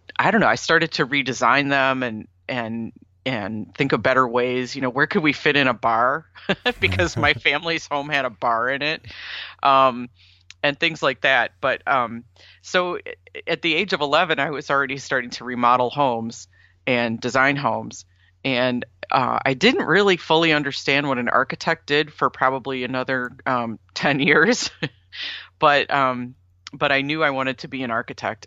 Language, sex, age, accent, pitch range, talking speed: English, female, 40-59, American, 115-140 Hz, 175 wpm